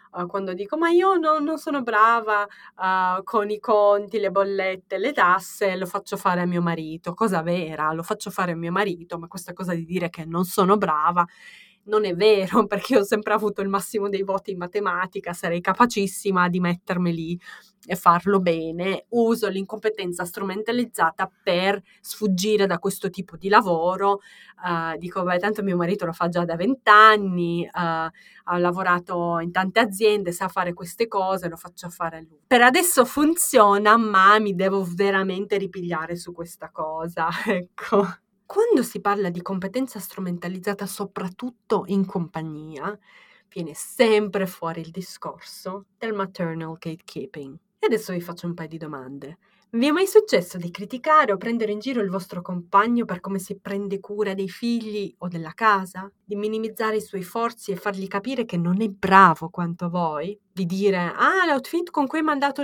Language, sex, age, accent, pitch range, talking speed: Italian, female, 20-39, native, 175-215 Hz, 165 wpm